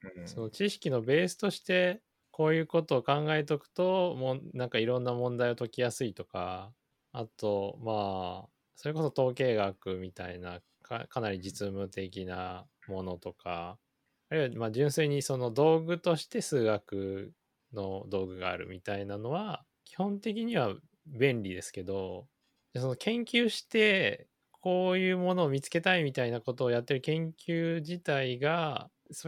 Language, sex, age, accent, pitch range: Japanese, male, 20-39, native, 100-160 Hz